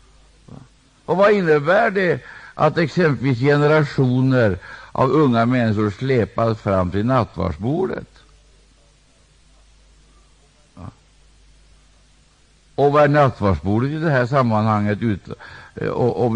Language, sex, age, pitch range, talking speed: Swedish, male, 60-79, 90-125 Hz, 85 wpm